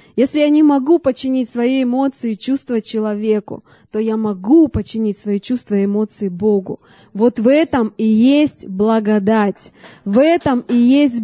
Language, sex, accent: Russian, female, native